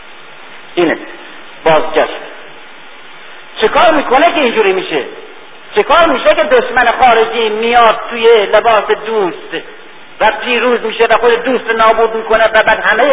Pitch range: 190-250 Hz